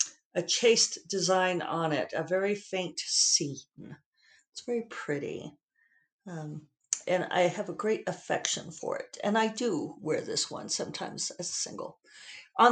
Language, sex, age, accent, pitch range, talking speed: English, female, 50-69, American, 175-240 Hz, 150 wpm